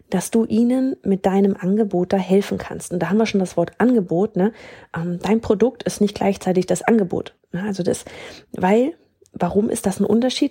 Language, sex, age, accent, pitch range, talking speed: German, female, 30-49, German, 180-220 Hz, 200 wpm